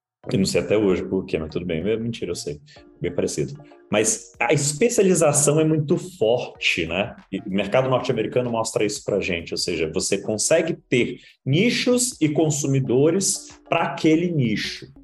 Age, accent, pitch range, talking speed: 30-49, Brazilian, 130-185 Hz, 160 wpm